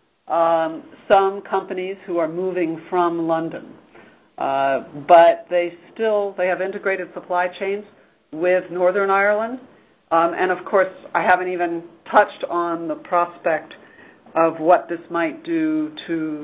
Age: 60-79